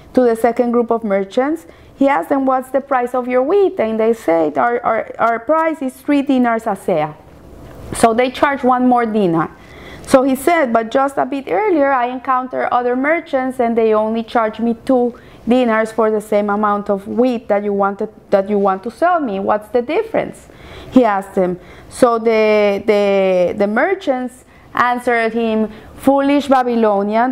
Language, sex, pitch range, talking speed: English, female, 220-260 Hz, 180 wpm